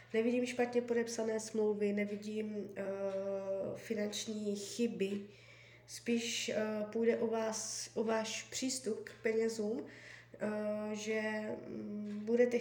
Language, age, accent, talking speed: Czech, 20-39, native, 105 wpm